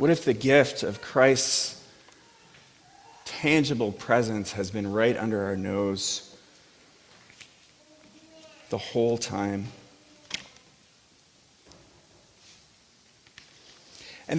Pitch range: 120-160 Hz